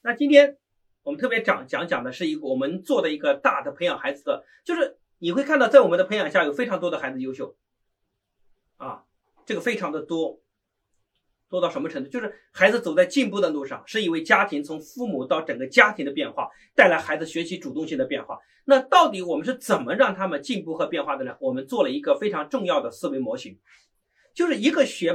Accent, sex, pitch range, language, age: native, male, 195-285 Hz, Chinese, 30-49